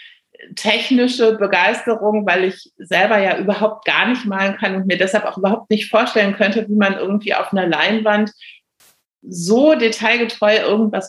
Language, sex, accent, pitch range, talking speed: German, female, German, 190-230 Hz, 150 wpm